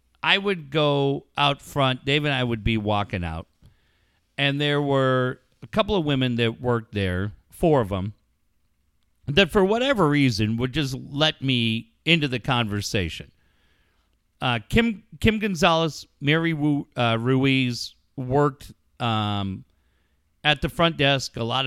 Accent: American